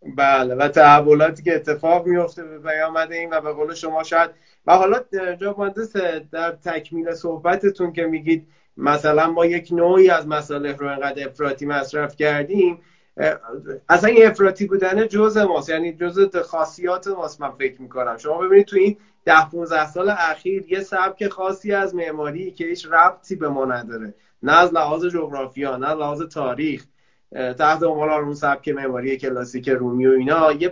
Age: 30-49